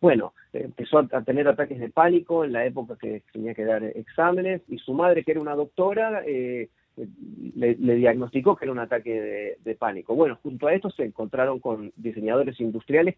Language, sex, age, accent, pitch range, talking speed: Spanish, male, 40-59, Argentinian, 115-155 Hz, 190 wpm